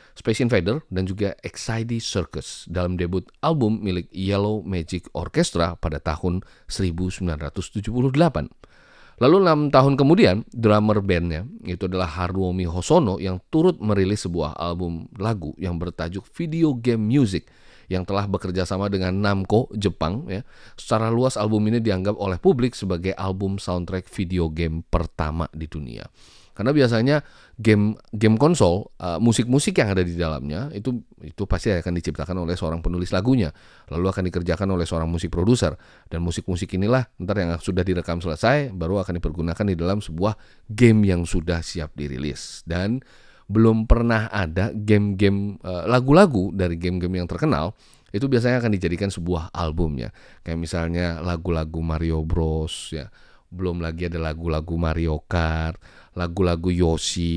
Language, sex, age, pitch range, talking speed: Indonesian, male, 30-49, 85-110 Hz, 140 wpm